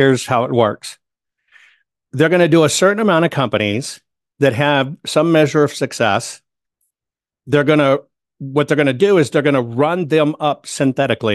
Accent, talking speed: American, 185 wpm